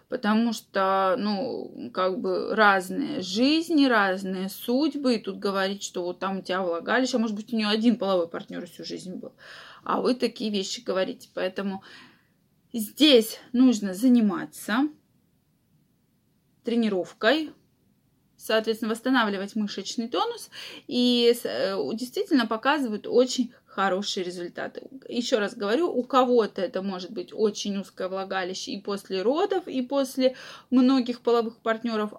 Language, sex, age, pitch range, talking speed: Russian, female, 20-39, 200-260 Hz, 125 wpm